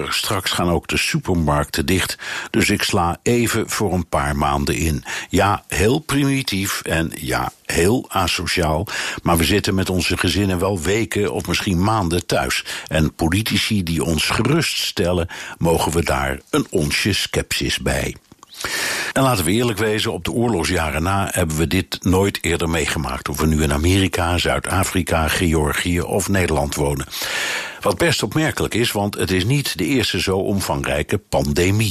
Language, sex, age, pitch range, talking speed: Dutch, male, 60-79, 80-105 Hz, 160 wpm